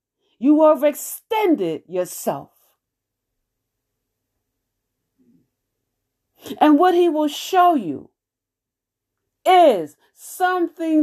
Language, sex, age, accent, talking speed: English, female, 40-59, American, 60 wpm